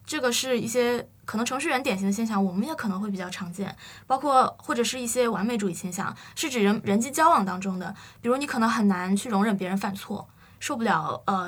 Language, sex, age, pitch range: Chinese, female, 20-39, 200-260 Hz